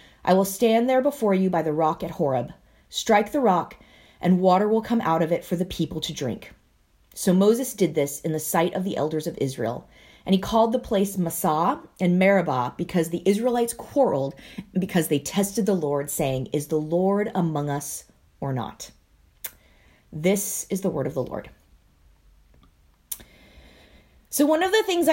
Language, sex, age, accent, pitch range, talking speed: English, female, 30-49, American, 170-260 Hz, 180 wpm